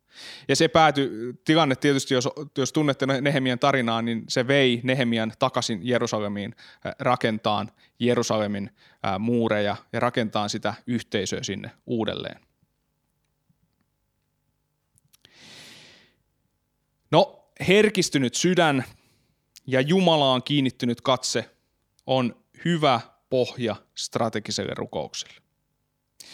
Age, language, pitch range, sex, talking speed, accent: 20-39, Finnish, 115-150 Hz, male, 85 wpm, native